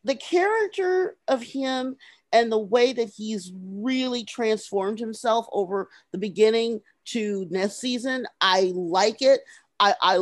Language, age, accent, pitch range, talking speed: English, 40-59, American, 190-260 Hz, 130 wpm